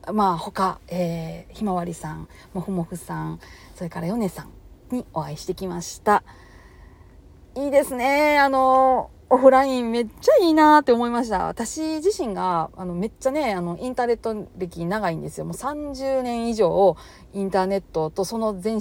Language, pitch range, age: Japanese, 175-250 Hz, 40-59